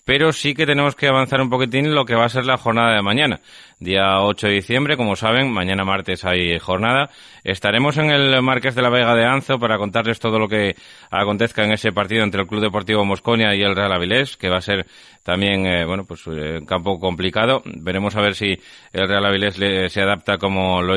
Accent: Spanish